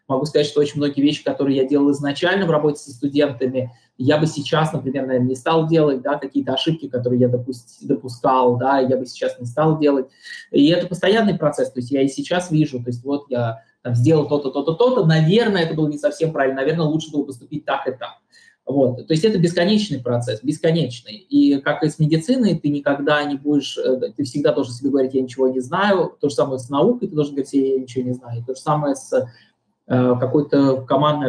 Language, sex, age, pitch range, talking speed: Russian, male, 20-39, 130-155 Hz, 215 wpm